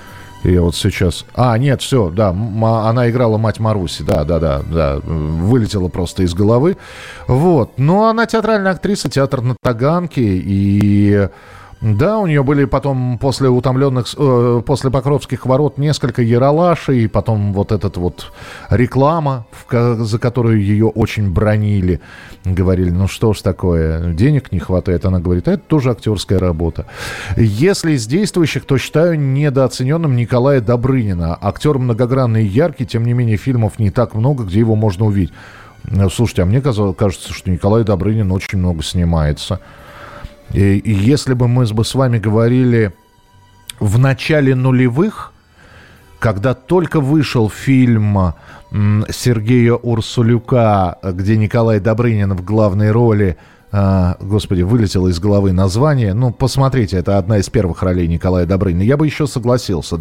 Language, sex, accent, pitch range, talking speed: Russian, male, native, 95-130 Hz, 140 wpm